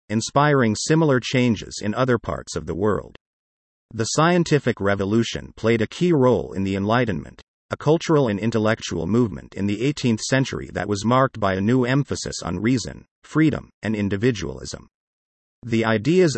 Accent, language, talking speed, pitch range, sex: American, English, 155 wpm, 100-130 Hz, male